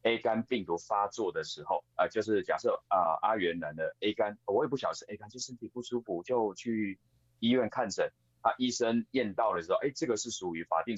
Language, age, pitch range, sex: Chinese, 30-49, 85-130 Hz, male